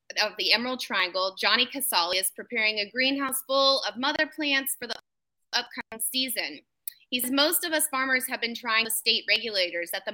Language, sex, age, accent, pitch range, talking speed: English, female, 20-39, American, 195-270 Hz, 190 wpm